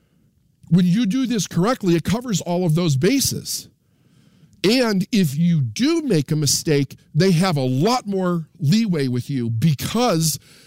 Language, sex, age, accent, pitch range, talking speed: English, male, 50-69, American, 140-185 Hz, 150 wpm